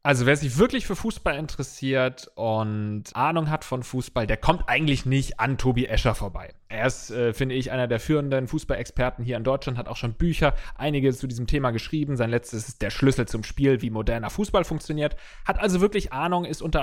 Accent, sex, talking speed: German, male, 205 wpm